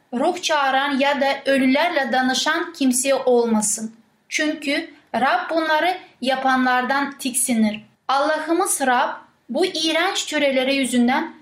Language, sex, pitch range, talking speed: Turkish, female, 245-300 Hz, 100 wpm